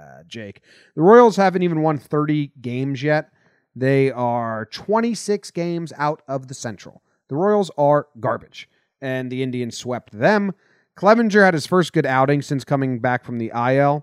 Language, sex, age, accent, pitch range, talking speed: English, male, 30-49, American, 115-165 Hz, 165 wpm